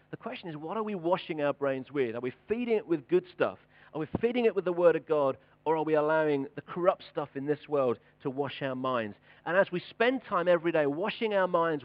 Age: 40-59